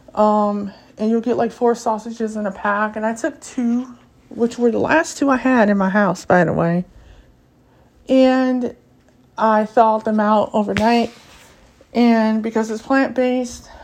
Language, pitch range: English, 200-230 Hz